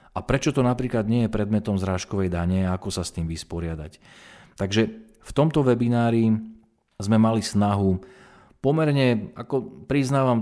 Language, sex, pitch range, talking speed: Slovak, male, 90-110 Hz, 145 wpm